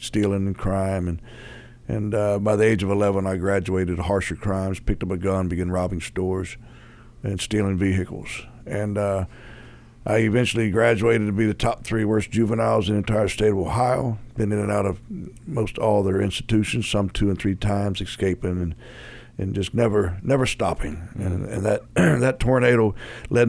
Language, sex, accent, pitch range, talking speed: English, male, American, 95-115 Hz, 180 wpm